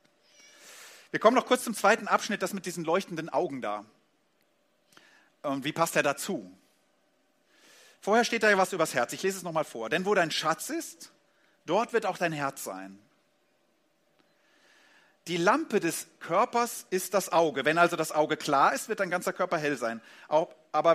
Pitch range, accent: 155-225 Hz, German